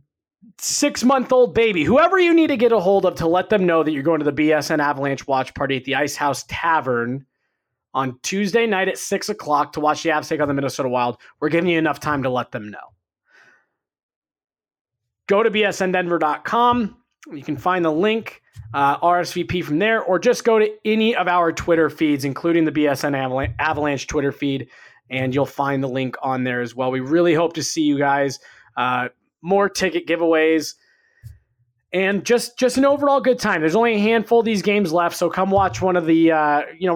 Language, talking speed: English, 205 wpm